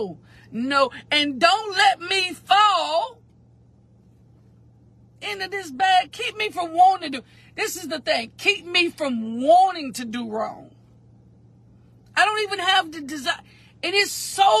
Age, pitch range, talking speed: 50-69, 255-365 Hz, 145 wpm